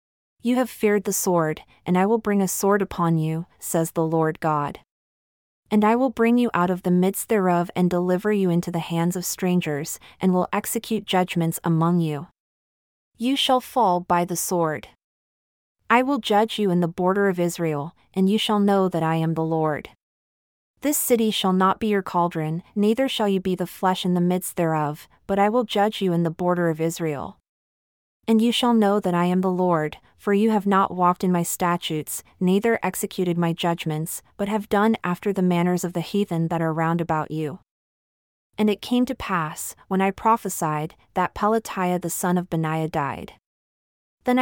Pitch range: 170-205 Hz